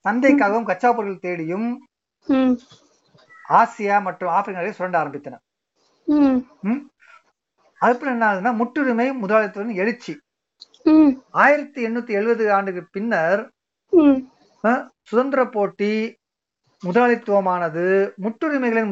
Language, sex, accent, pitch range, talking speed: Tamil, male, native, 190-260 Hz, 50 wpm